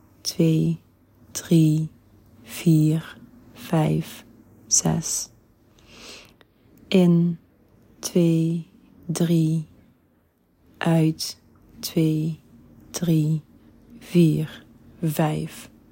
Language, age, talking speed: Dutch, 30-49, 50 wpm